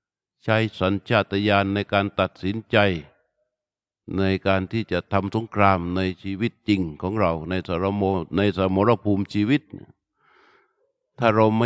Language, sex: Thai, male